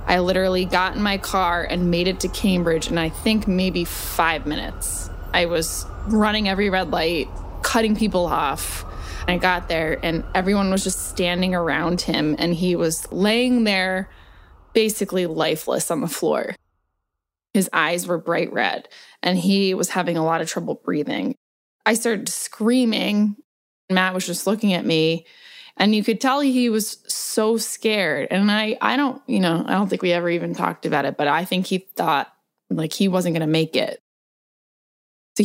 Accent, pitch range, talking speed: American, 165-205 Hz, 180 wpm